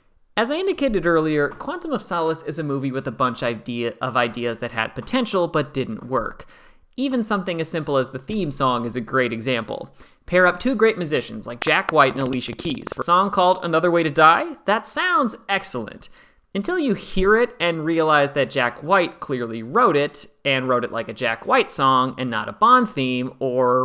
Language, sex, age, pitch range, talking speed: English, male, 30-49, 130-190 Hz, 205 wpm